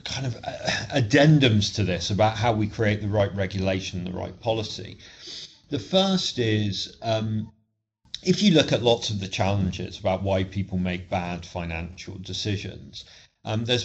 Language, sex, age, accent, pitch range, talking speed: English, male, 40-59, British, 95-115 Hz, 155 wpm